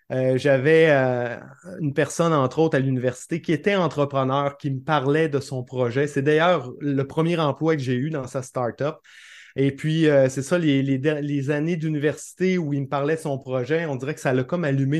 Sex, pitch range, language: male, 135-170 Hz, French